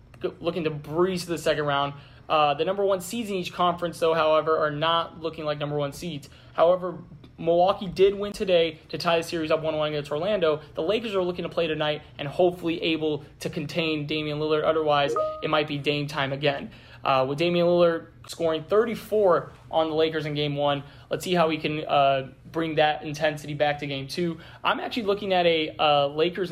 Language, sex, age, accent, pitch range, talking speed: English, male, 20-39, American, 150-175 Hz, 205 wpm